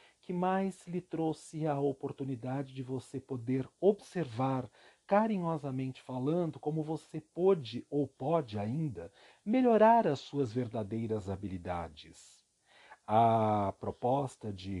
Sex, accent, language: male, Brazilian, Portuguese